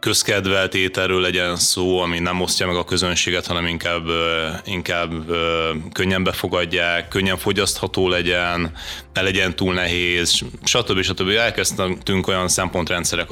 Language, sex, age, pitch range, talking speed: Hungarian, male, 30-49, 85-95 Hz, 125 wpm